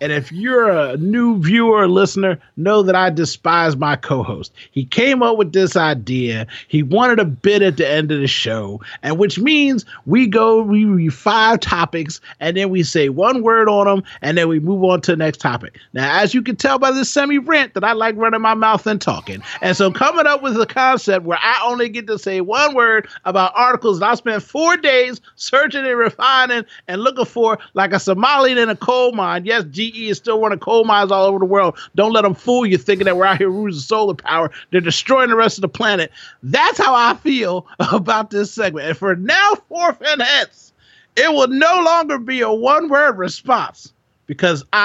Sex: male